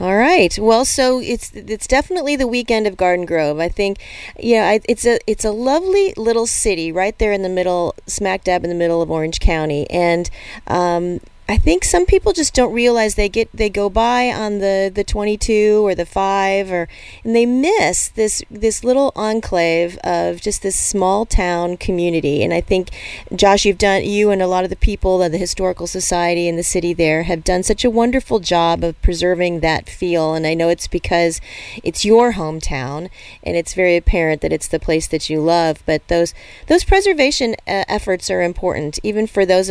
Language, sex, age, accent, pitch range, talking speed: English, female, 30-49, American, 170-220 Hz, 200 wpm